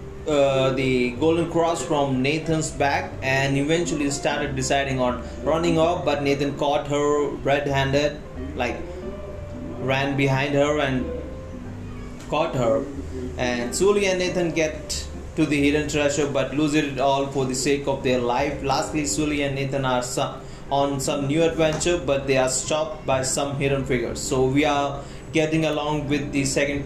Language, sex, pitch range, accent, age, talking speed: Hindi, male, 130-155 Hz, native, 30-49, 160 wpm